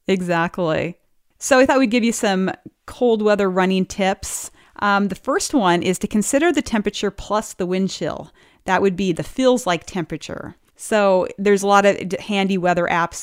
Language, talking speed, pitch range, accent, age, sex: English, 180 wpm, 170-200 Hz, American, 30-49, female